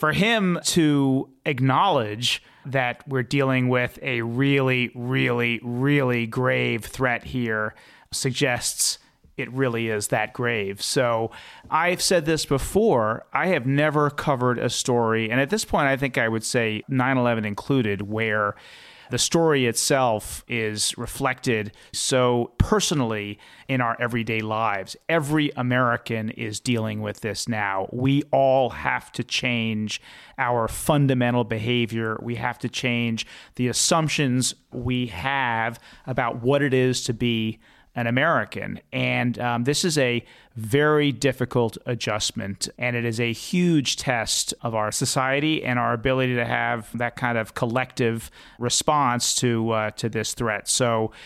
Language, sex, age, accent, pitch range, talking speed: English, male, 30-49, American, 115-135 Hz, 140 wpm